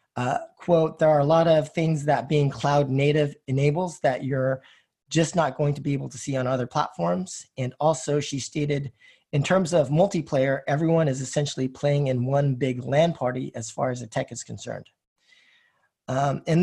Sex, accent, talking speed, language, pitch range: male, American, 190 wpm, English, 130-160 Hz